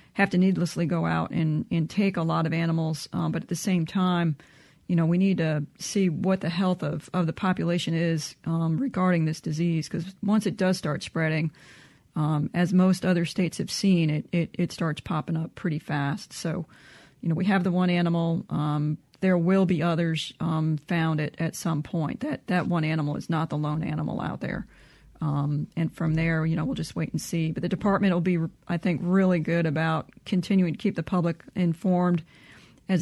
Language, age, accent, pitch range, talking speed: English, 40-59, American, 160-180 Hz, 210 wpm